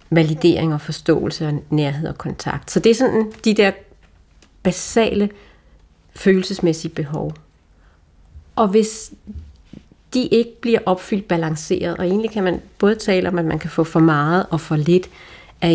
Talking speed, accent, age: 150 wpm, native, 40-59